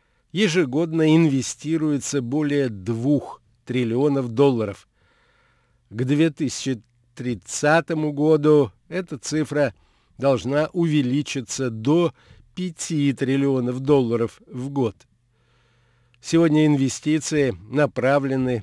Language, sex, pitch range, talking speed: Russian, male, 120-155 Hz, 70 wpm